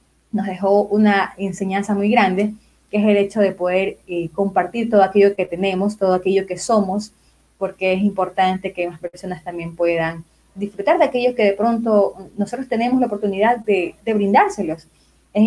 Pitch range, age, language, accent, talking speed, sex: 185-210 Hz, 20-39, Spanish, American, 170 wpm, female